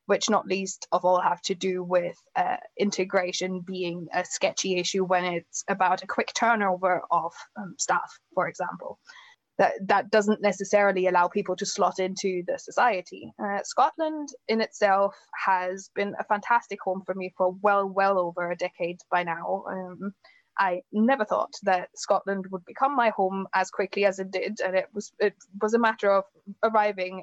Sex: female